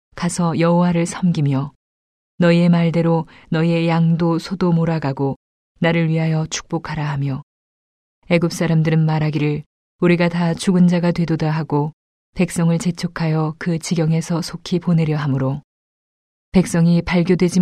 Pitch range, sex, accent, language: 155-175 Hz, female, native, Korean